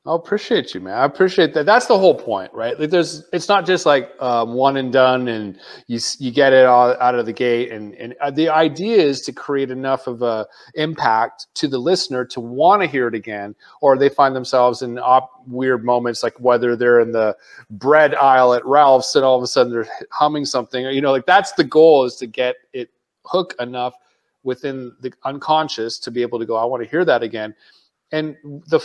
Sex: male